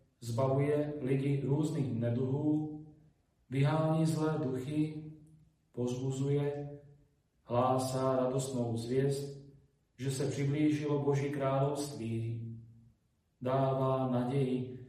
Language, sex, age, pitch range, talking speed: Slovak, male, 40-59, 125-150 Hz, 75 wpm